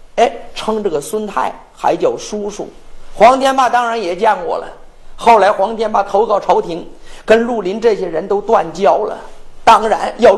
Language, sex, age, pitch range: Chinese, male, 50-69, 200-310 Hz